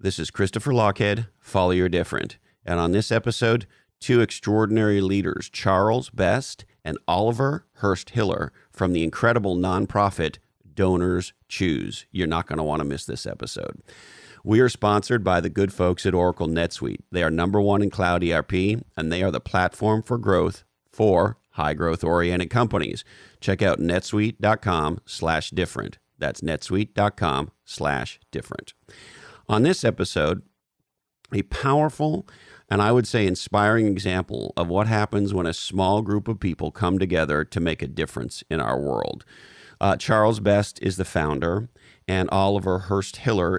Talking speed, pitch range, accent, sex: 145 wpm, 90-110 Hz, American, male